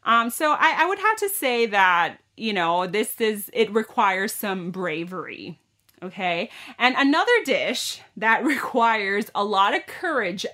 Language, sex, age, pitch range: Thai, female, 30-49, 195-290 Hz